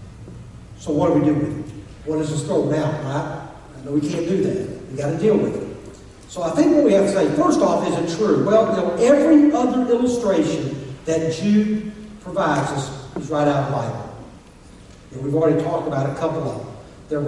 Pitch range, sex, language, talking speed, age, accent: 150-200 Hz, male, English, 225 wpm, 60-79, American